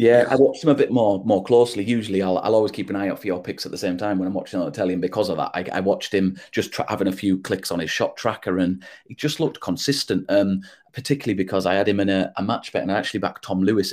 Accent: British